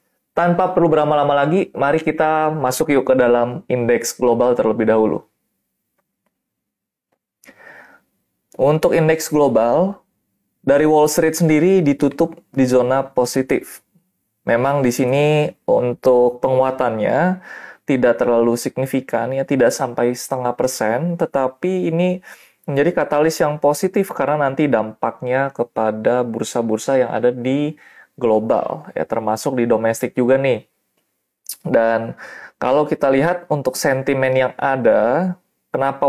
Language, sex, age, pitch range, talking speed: Indonesian, male, 20-39, 120-150 Hz, 115 wpm